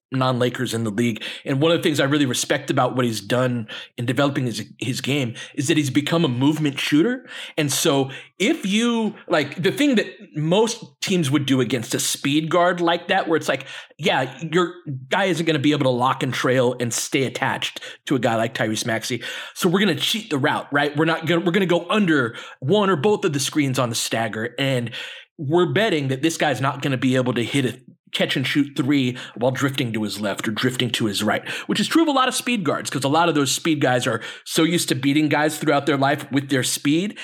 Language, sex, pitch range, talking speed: English, male, 130-175 Hz, 245 wpm